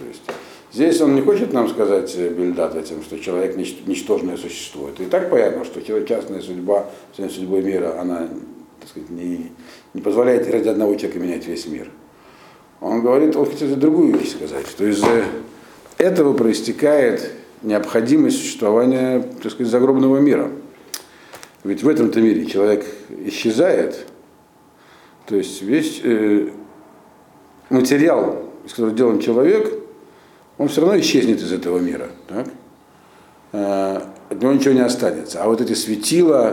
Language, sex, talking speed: Russian, male, 135 wpm